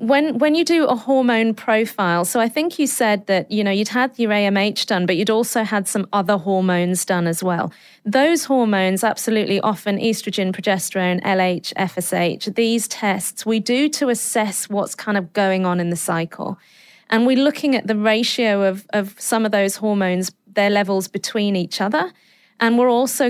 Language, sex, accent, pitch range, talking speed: English, female, British, 190-230 Hz, 185 wpm